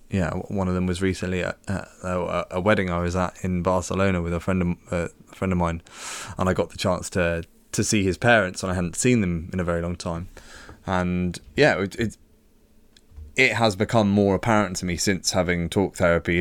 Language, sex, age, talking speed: English, male, 20-39, 210 wpm